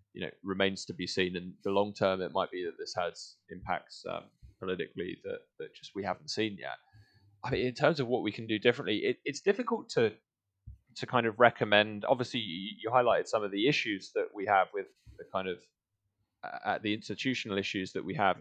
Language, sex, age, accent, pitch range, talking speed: English, male, 10-29, British, 95-115 Hz, 215 wpm